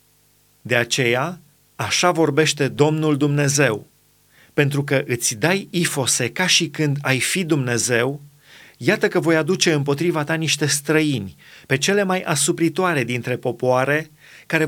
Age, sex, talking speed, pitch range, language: 30-49, male, 130 wpm, 135-165 Hz, Romanian